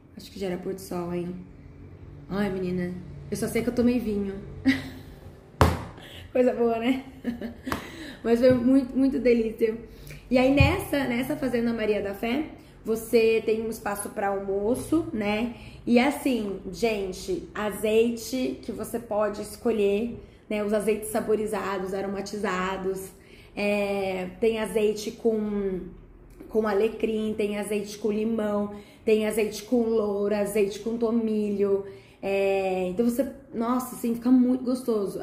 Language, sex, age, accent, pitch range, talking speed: Portuguese, female, 20-39, Brazilian, 200-235 Hz, 130 wpm